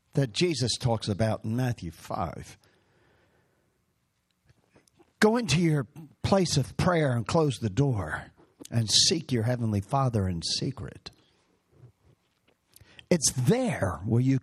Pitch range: 110-160 Hz